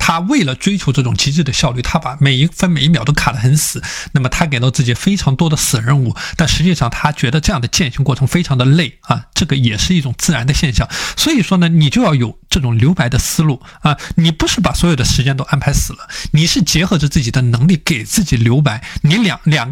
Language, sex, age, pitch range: Chinese, male, 20-39, 130-170 Hz